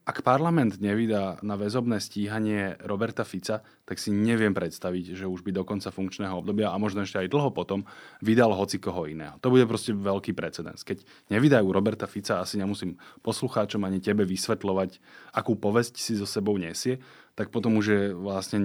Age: 20-39